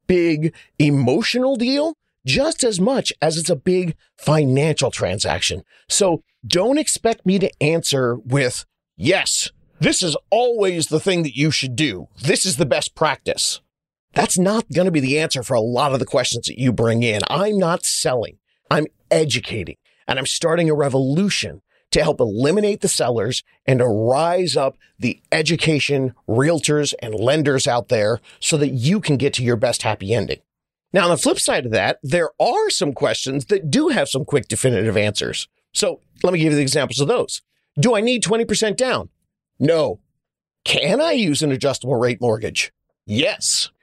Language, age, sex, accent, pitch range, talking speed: English, 40-59, male, American, 130-190 Hz, 175 wpm